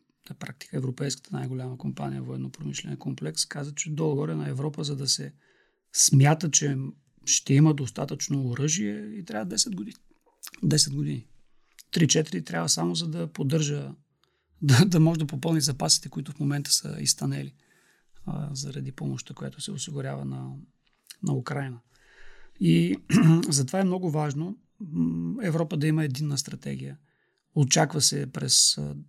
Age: 40-59